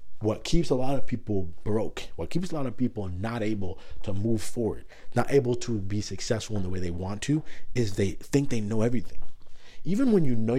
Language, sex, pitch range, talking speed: English, male, 95-120 Hz, 220 wpm